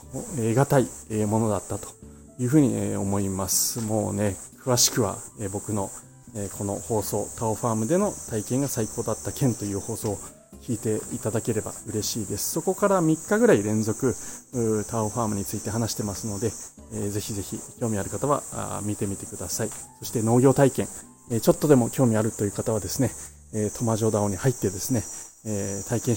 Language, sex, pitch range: Japanese, male, 105-130 Hz